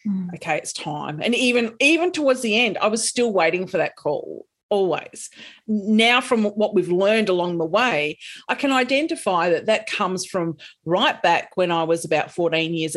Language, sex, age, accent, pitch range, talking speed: English, female, 40-59, Australian, 180-240 Hz, 185 wpm